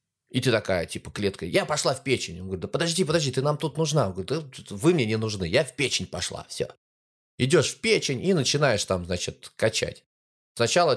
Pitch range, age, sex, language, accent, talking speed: 95-145 Hz, 20-39, male, Russian, native, 215 wpm